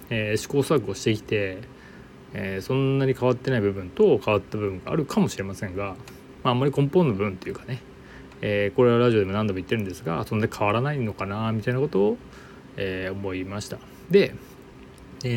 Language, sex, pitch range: Japanese, male, 95-130 Hz